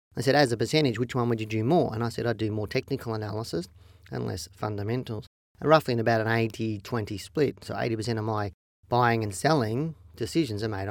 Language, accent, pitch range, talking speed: English, Australian, 110-130 Hz, 210 wpm